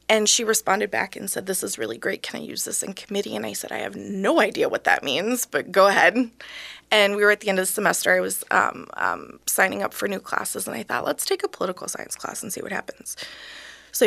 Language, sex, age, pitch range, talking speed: English, female, 20-39, 195-250 Hz, 260 wpm